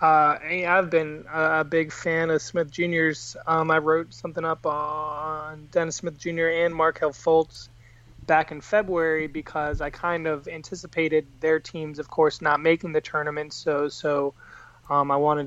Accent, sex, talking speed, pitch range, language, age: American, male, 165 wpm, 140-160 Hz, English, 20-39